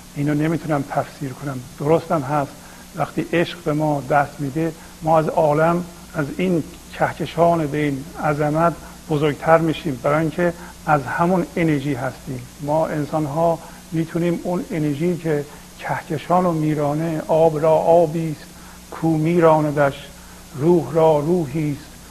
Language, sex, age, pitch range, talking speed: Persian, male, 50-69, 145-170 Hz, 135 wpm